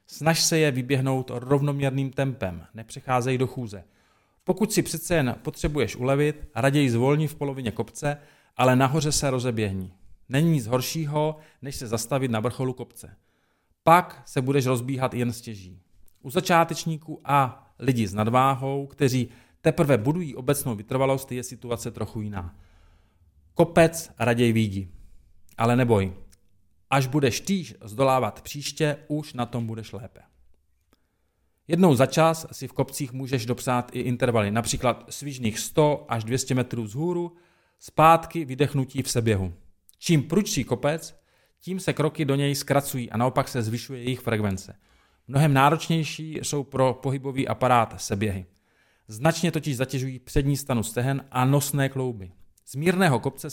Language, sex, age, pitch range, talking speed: Czech, male, 40-59, 115-145 Hz, 140 wpm